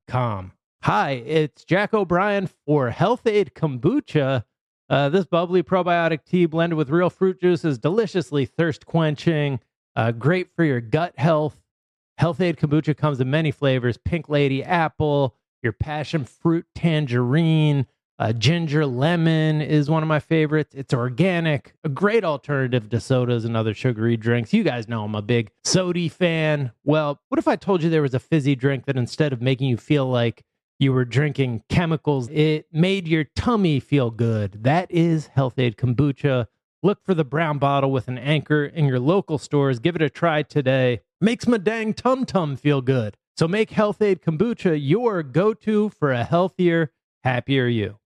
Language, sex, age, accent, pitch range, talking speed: English, male, 30-49, American, 130-170 Hz, 175 wpm